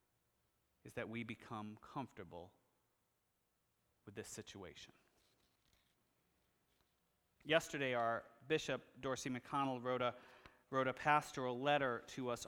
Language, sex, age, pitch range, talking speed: English, male, 30-49, 110-140 Hz, 95 wpm